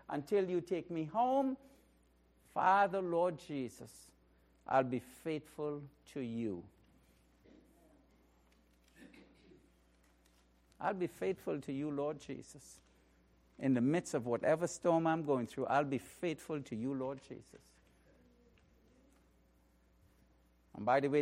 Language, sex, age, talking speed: English, male, 60-79, 115 wpm